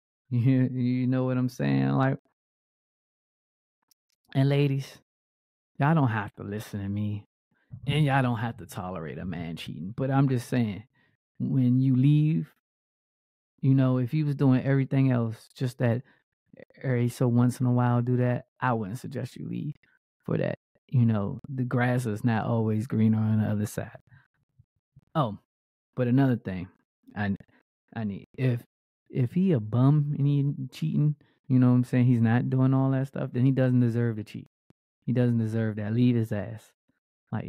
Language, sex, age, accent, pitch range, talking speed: English, male, 20-39, American, 110-135 Hz, 175 wpm